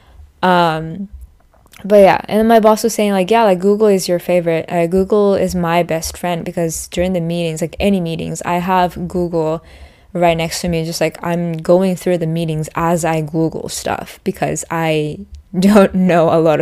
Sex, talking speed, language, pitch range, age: female, 190 wpm, English, 160-195 Hz, 10-29